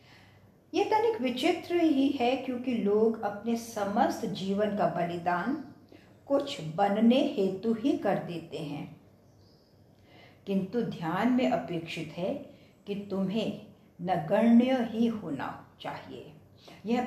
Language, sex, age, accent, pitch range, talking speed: English, female, 60-79, Indian, 175-245 Hz, 110 wpm